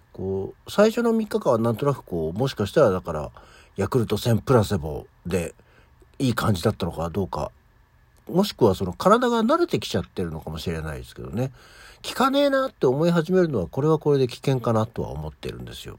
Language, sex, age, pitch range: Japanese, male, 60-79, 95-135 Hz